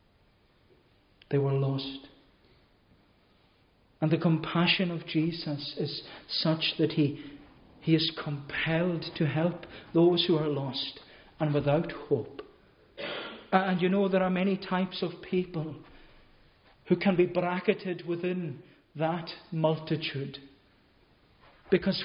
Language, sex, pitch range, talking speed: English, male, 150-195 Hz, 110 wpm